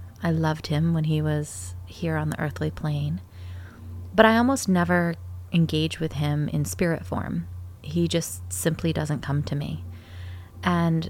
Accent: American